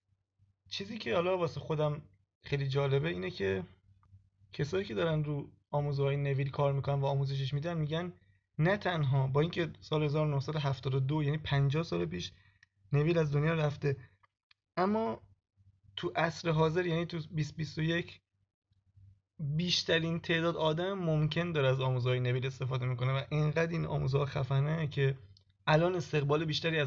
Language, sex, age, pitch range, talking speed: Persian, male, 20-39, 110-155 Hz, 135 wpm